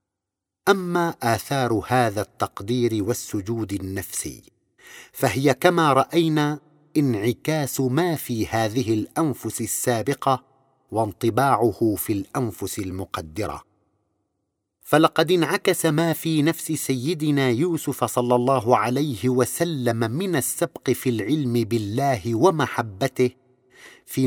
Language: Arabic